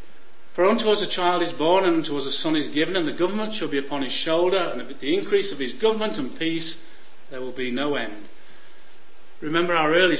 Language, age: English, 40-59